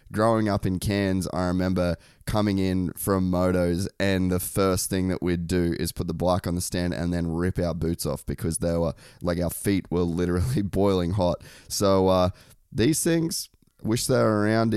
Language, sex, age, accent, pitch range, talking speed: English, male, 20-39, Australian, 90-105 Hz, 195 wpm